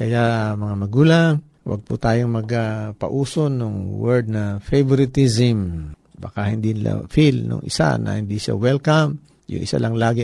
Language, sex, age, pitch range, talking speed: Filipino, male, 50-69, 95-125 Hz, 140 wpm